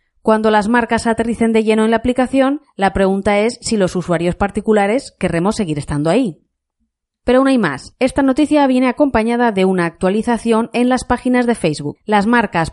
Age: 30-49